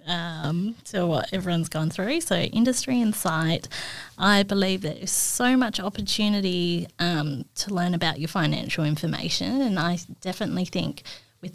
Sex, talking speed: female, 150 wpm